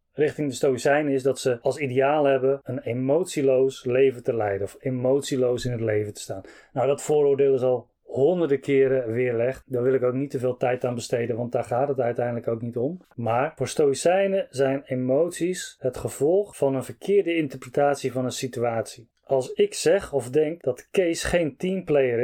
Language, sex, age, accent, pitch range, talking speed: Dutch, male, 30-49, Dutch, 125-155 Hz, 190 wpm